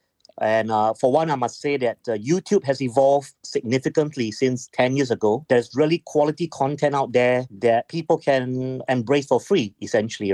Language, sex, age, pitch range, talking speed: English, male, 30-49, 125-155 Hz, 175 wpm